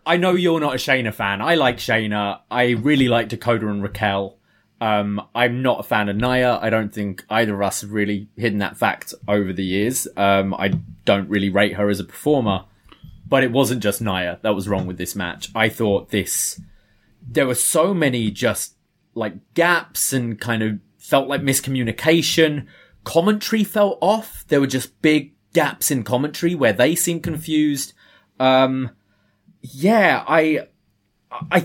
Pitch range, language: 110-160 Hz, English